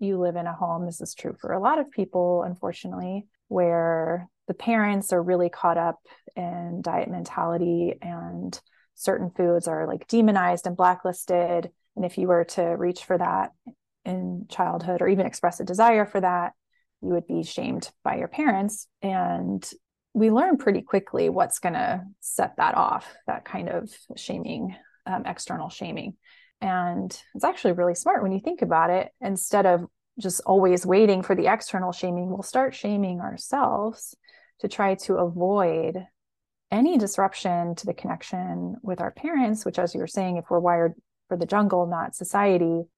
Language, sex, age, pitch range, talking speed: English, female, 20-39, 175-205 Hz, 170 wpm